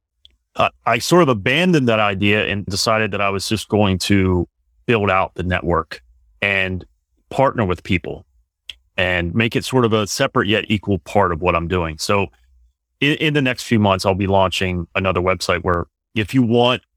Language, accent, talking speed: English, American, 185 wpm